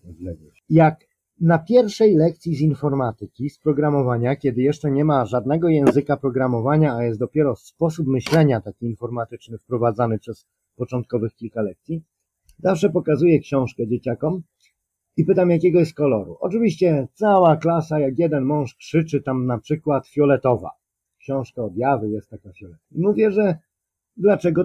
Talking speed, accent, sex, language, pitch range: 135 wpm, native, male, Polish, 125-165 Hz